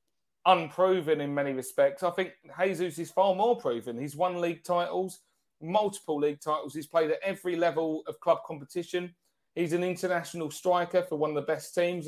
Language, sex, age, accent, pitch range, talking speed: English, male, 30-49, British, 150-185 Hz, 180 wpm